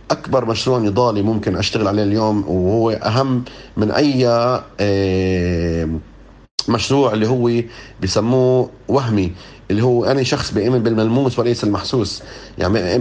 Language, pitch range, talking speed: Arabic, 100-120 Hz, 115 wpm